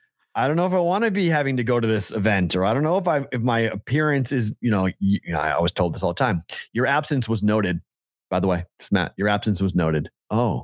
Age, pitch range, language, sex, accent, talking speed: 30-49, 95-125 Hz, English, male, American, 265 wpm